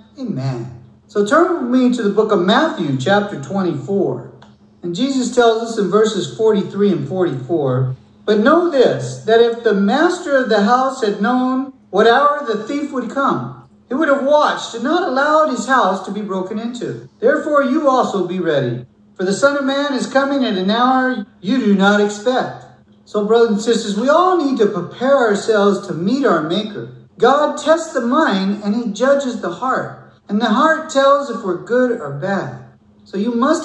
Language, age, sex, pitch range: English, 50-69, male, 185-255 Hz